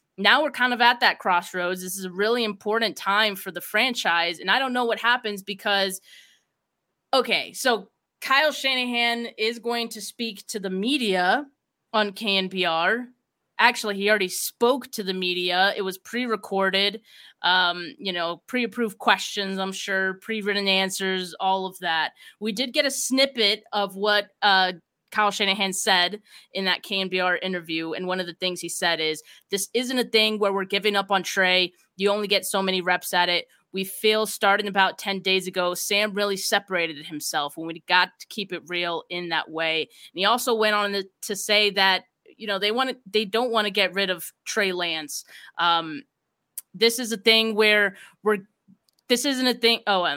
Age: 20-39